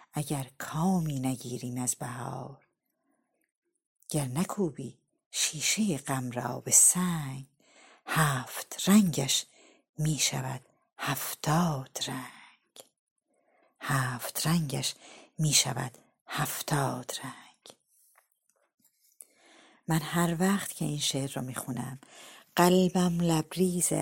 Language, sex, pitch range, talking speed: Persian, female, 140-180 Hz, 80 wpm